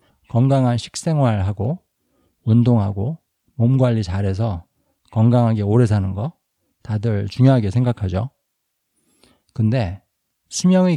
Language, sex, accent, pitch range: Korean, male, native, 105-135 Hz